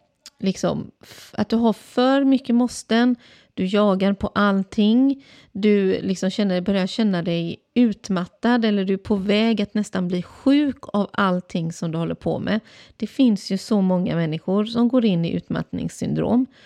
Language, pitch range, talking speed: English, 185-240 Hz, 160 wpm